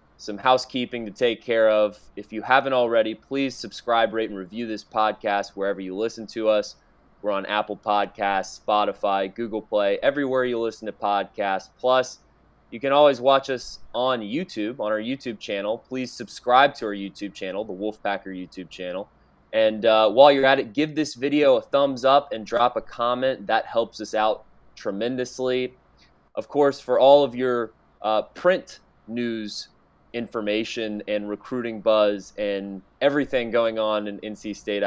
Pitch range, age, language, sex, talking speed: 100-125 Hz, 20-39, English, male, 165 wpm